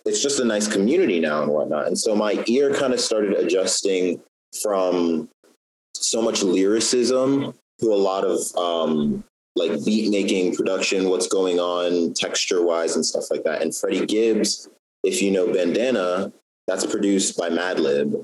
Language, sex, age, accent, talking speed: English, male, 30-49, American, 160 wpm